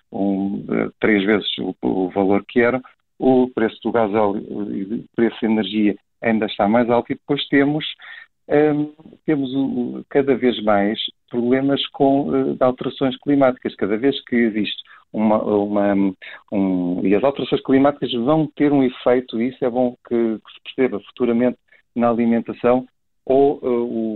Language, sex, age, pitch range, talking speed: Portuguese, male, 50-69, 115-140 Hz, 140 wpm